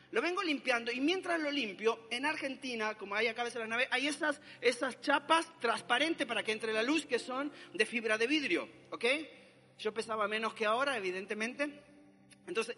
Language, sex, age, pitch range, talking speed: Spanish, male, 40-59, 215-285 Hz, 190 wpm